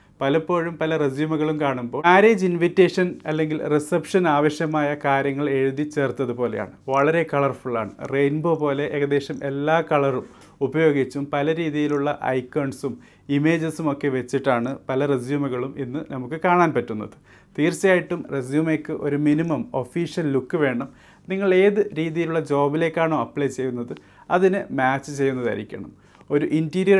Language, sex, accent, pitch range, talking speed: Malayalam, male, native, 135-160 Hz, 110 wpm